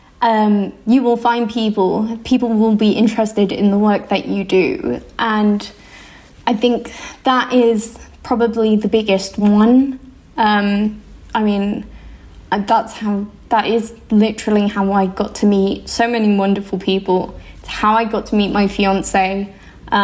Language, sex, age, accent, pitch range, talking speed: English, female, 20-39, British, 205-230 Hz, 145 wpm